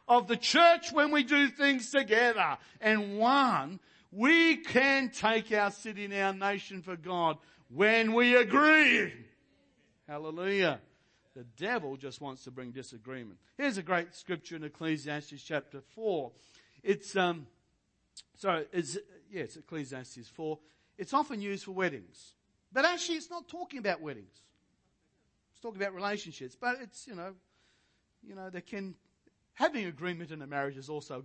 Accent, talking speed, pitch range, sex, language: Australian, 155 wpm, 140-215 Hz, male, English